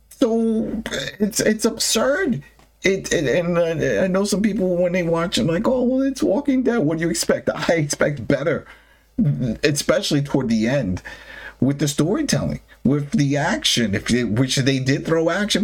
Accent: American